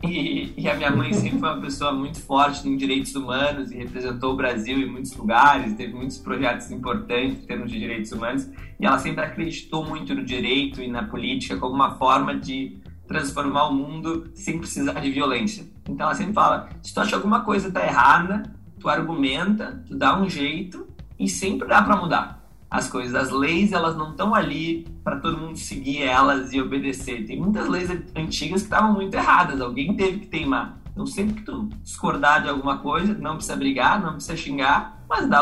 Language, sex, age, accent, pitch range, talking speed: Portuguese, male, 20-39, Brazilian, 135-195 Hz, 200 wpm